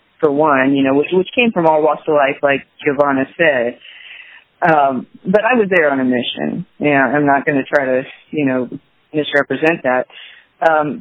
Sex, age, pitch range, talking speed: female, 30-49, 140-185 Hz, 190 wpm